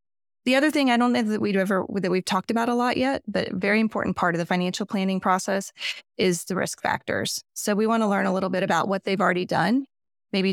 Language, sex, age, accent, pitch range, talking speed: English, female, 20-39, American, 165-195 Hz, 240 wpm